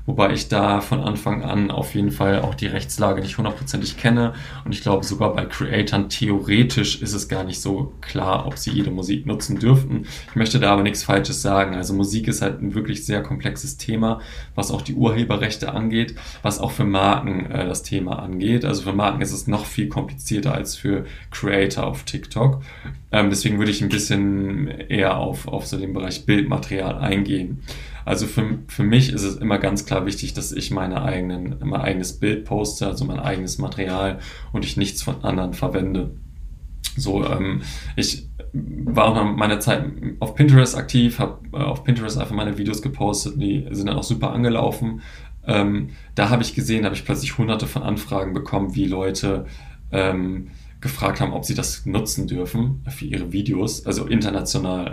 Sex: male